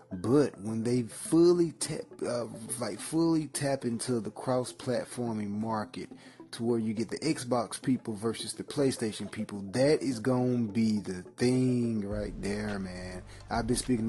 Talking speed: 160 wpm